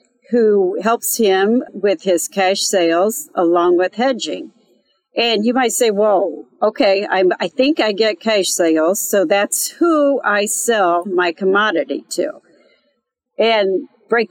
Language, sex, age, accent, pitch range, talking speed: English, female, 50-69, American, 190-250 Hz, 140 wpm